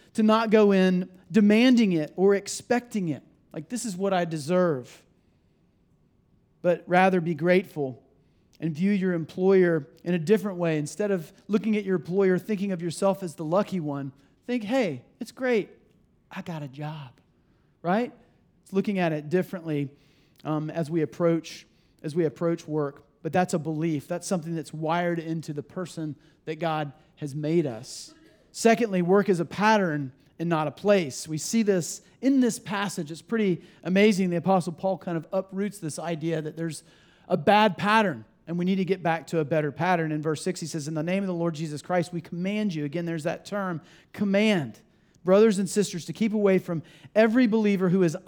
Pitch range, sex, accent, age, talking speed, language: 160-200 Hz, male, American, 40-59, 190 wpm, English